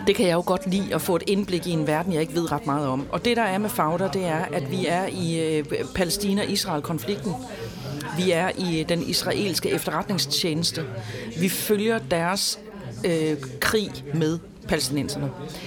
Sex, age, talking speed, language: female, 40-59, 175 wpm, Danish